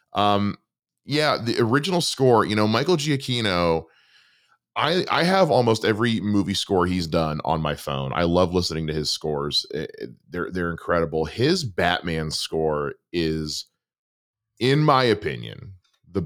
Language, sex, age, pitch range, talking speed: English, male, 30-49, 80-105 Hz, 140 wpm